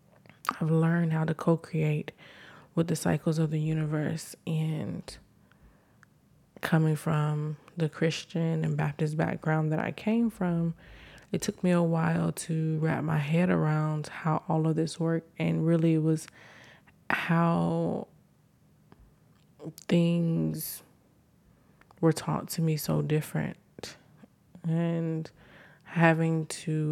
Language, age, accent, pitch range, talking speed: English, 20-39, American, 155-170 Hz, 120 wpm